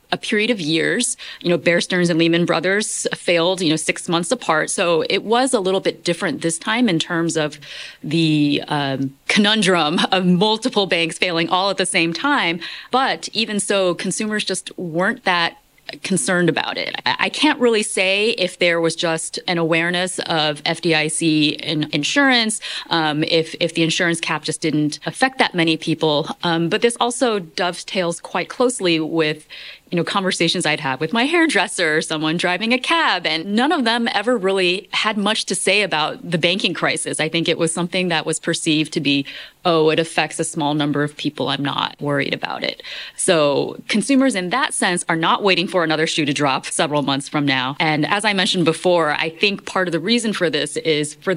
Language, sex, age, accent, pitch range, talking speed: English, female, 30-49, American, 160-200 Hz, 195 wpm